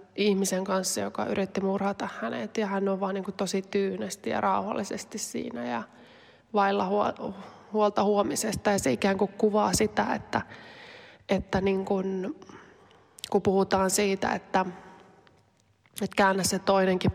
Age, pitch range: 20-39, 185-200 Hz